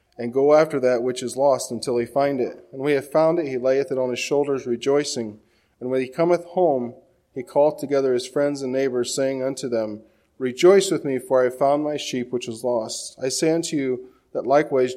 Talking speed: 225 wpm